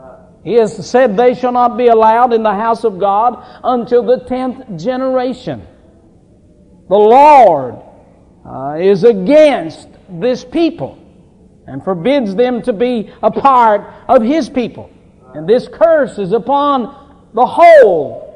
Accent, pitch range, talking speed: American, 190-245 Hz, 135 wpm